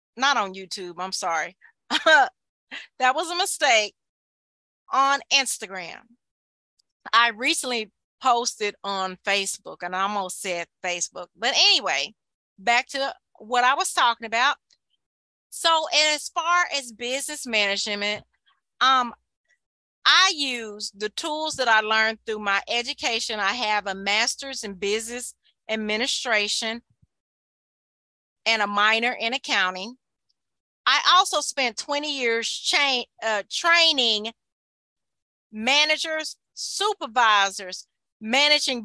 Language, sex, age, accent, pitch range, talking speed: English, female, 30-49, American, 210-290 Hz, 110 wpm